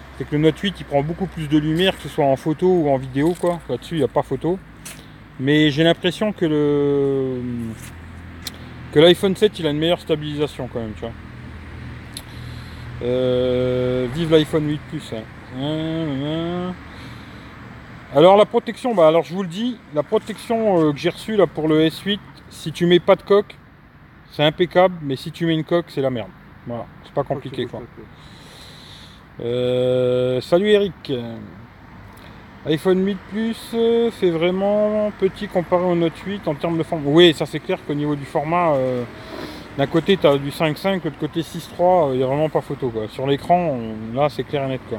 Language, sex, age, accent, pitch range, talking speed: French, male, 30-49, French, 130-175 Hz, 190 wpm